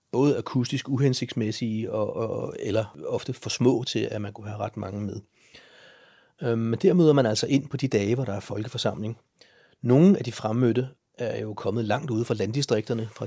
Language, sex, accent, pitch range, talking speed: Danish, male, native, 110-125 Hz, 195 wpm